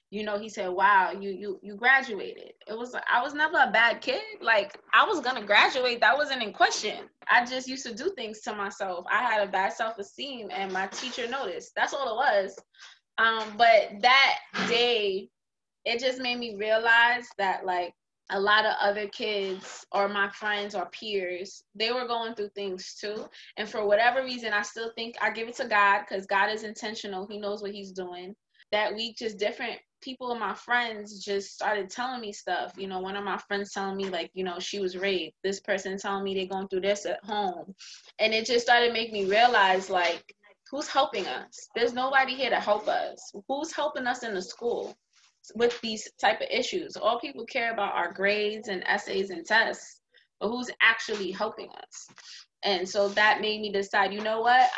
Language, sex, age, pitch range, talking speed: English, female, 20-39, 200-240 Hz, 205 wpm